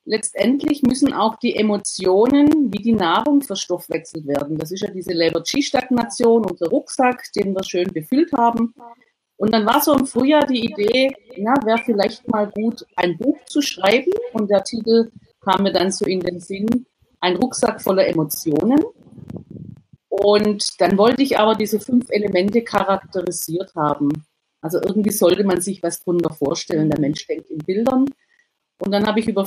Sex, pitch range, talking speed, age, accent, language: female, 180-250 Hz, 170 wpm, 40-59, German, German